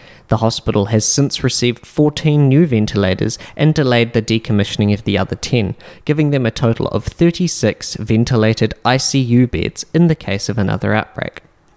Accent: Australian